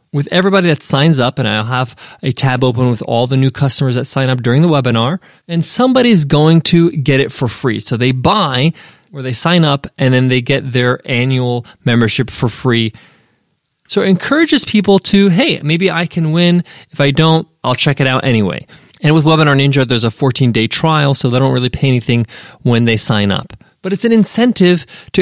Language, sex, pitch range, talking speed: English, male, 130-175 Hz, 205 wpm